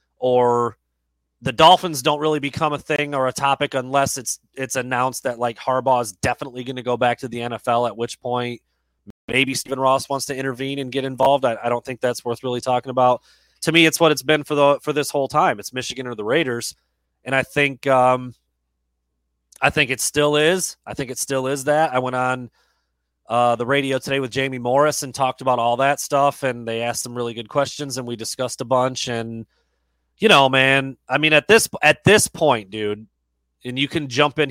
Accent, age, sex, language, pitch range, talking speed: American, 30-49, male, English, 115-145 Hz, 215 wpm